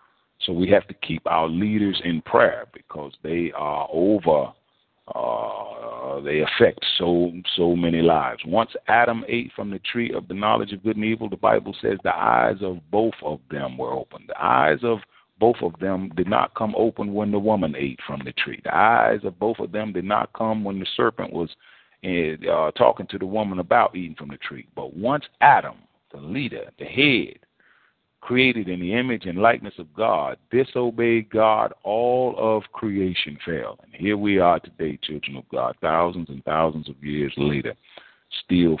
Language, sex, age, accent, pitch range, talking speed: English, male, 40-59, American, 75-105 Hz, 185 wpm